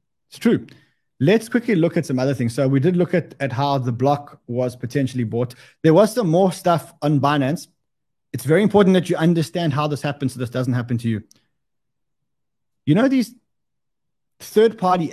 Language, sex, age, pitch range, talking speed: English, male, 20-39, 130-170 Hz, 185 wpm